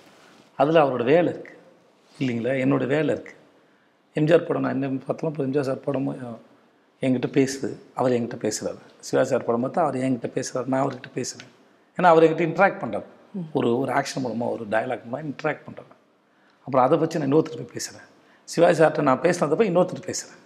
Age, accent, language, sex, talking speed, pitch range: 40-59, native, Tamil, male, 165 wpm, 130-170 Hz